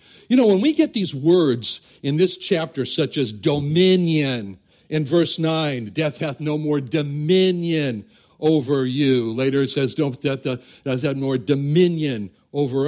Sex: male